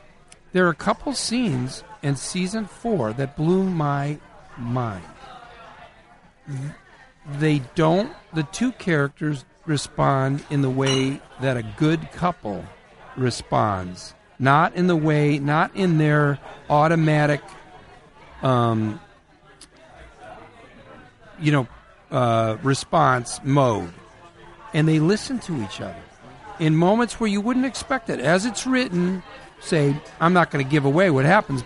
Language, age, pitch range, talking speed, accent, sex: English, 50-69, 135-200 Hz, 125 wpm, American, male